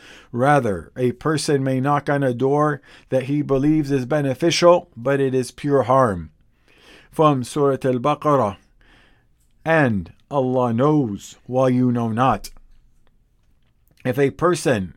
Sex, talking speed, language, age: male, 125 wpm, English, 50-69